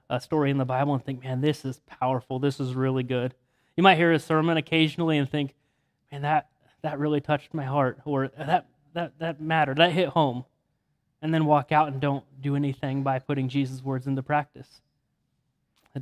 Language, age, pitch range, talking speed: English, 20-39, 135-160 Hz, 200 wpm